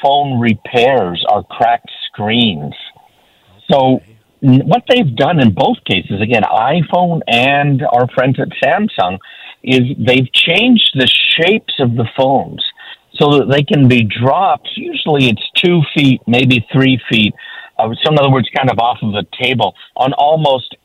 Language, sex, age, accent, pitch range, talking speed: English, male, 50-69, American, 110-140 Hz, 155 wpm